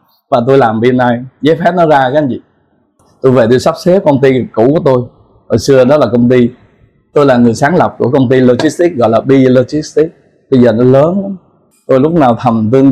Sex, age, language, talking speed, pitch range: male, 20-39, Vietnamese, 230 wpm, 115-145 Hz